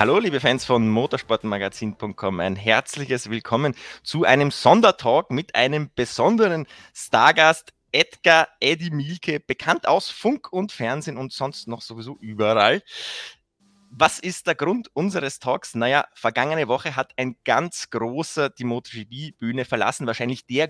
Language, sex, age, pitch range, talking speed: German, male, 20-39, 115-155 Hz, 135 wpm